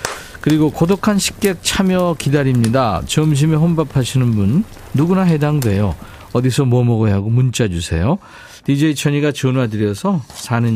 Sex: male